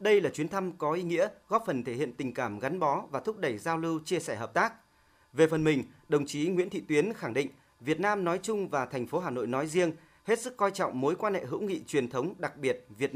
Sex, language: male, Vietnamese